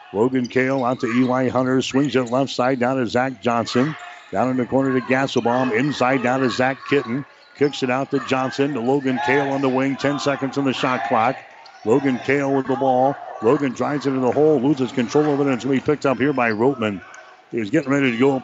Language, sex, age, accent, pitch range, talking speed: English, male, 60-79, American, 125-140 Hz, 230 wpm